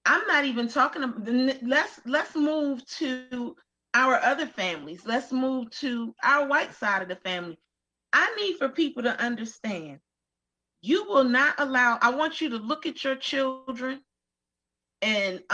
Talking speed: 160 wpm